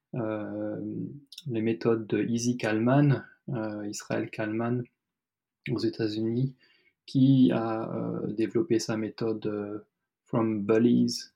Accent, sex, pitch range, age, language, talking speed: French, male, 115-135 Hz, 20-39, French, 110 wpm